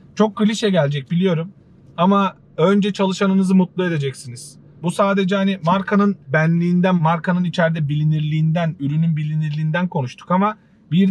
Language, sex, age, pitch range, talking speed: Turkish, male, 40-59, 165-205 Hz, 120 wpm